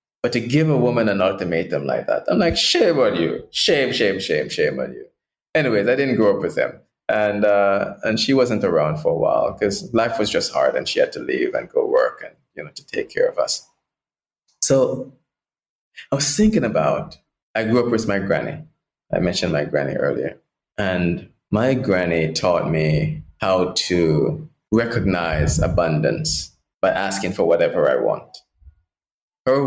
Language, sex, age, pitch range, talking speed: English, male, 20-39, 95-155 Hz, 180 wpm